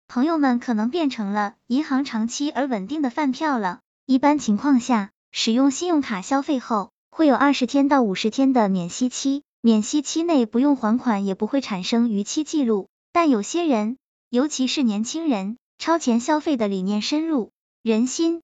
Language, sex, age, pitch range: Chinese, male, 20-39, 225-295 Hz